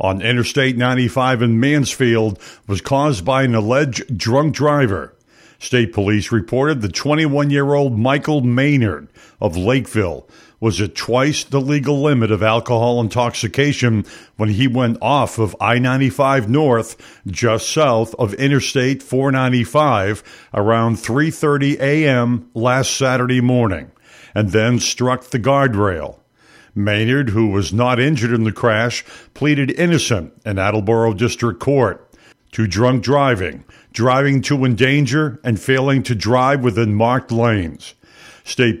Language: English